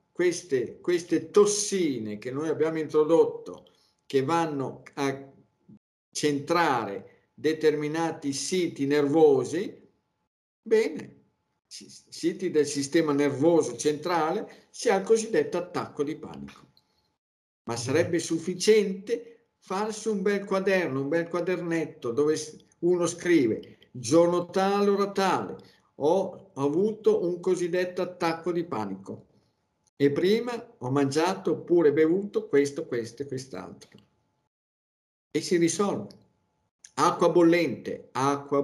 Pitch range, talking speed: 140-175 Hz, 105 wpm